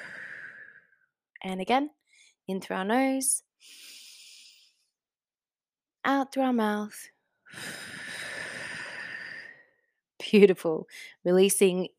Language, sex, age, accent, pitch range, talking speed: English, female, 20-39, Australian, 180-250 Hz, 60 wpm